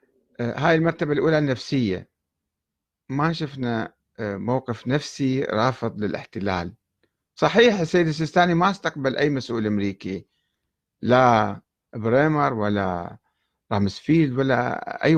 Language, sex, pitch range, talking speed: Arabic, male, 110-160 Hz, 95 wpm